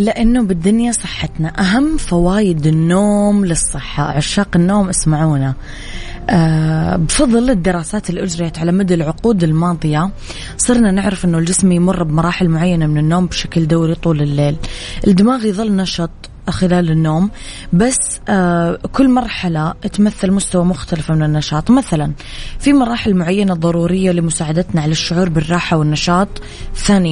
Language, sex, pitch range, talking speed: Arabic, female, 160-195 Hz, 125 wpm